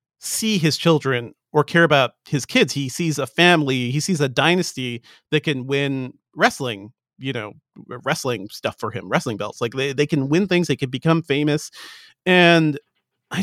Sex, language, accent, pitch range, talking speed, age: male, English, American, 125-160 Hz, 180 wpm, 40-59